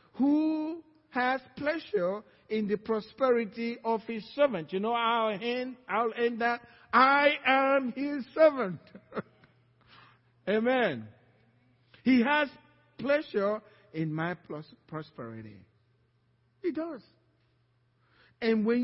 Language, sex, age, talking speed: English, male, 50-69, 100 wpm